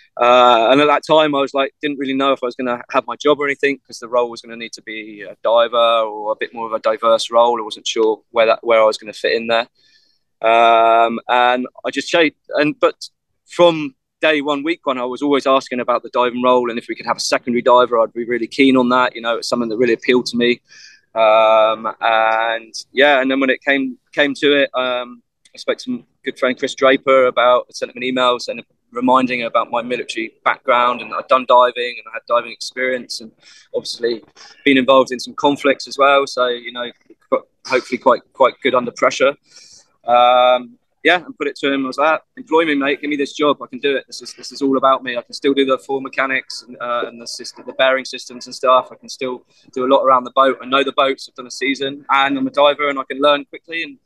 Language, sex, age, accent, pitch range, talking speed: English, male, 20-39, British, 120-140 Hz, 255 wpm